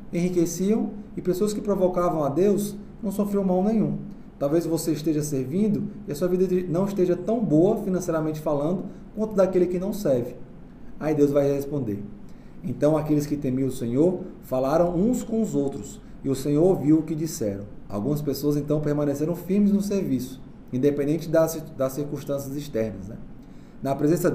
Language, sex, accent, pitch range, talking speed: Portuguese, male, Brazilian, 135-180 Hz, 165 wpm